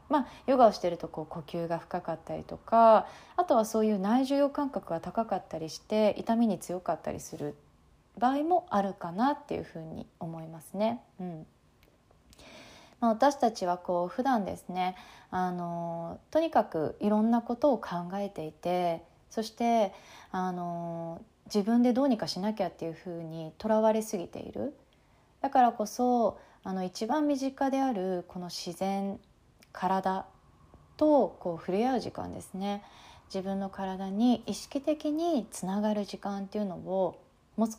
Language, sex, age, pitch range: Japanese, female, 20-39, 175-235 Hz